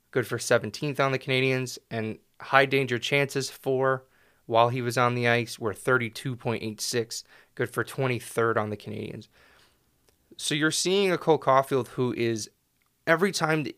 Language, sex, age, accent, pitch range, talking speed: English, male, 20-39, American, 115-135 Hz, 155 wpm